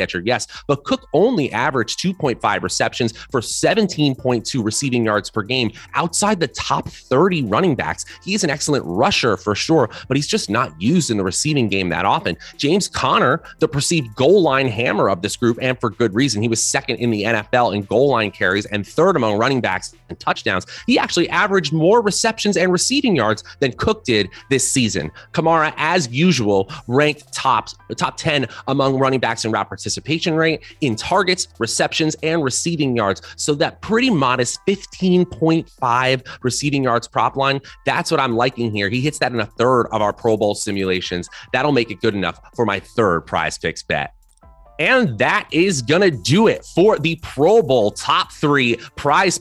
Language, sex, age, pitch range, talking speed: English, male, 30-49, 110-155 Hz, 180 wpm